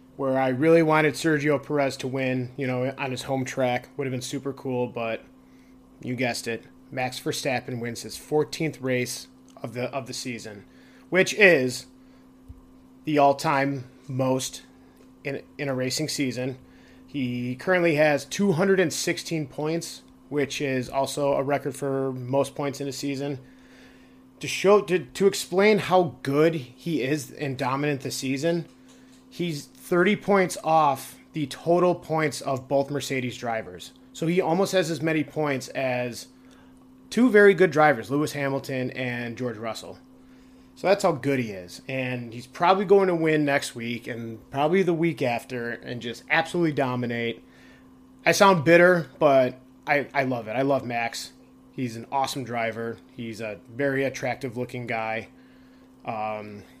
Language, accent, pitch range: English, American, 120-155 Hz